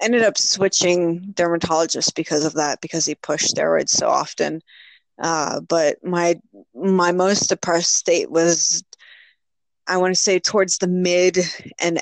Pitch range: 165-190 Hz